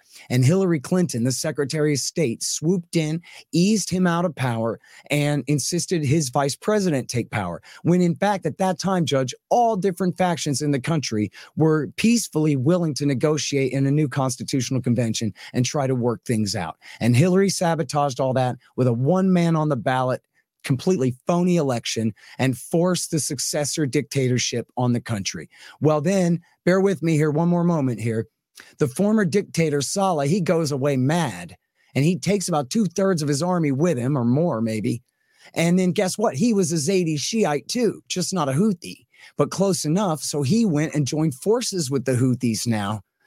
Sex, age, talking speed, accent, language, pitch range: male, 30-49, 185 wpm, American, English, 130-180 Hz